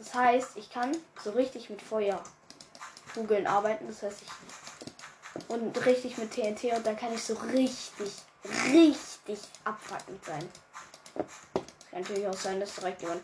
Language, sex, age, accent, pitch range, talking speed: German, female, 10-29, German, 220-300 Hz, 150 wpm